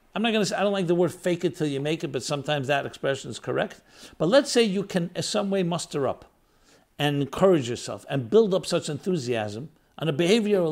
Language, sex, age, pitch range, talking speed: English, male, 60-79, 150-210 Hz, 240 wpm